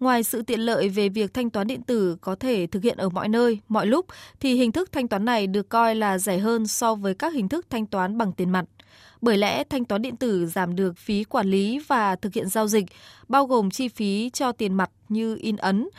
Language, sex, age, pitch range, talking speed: Vietnamese, female, 20-39, 175-230 Hz, 250 wpm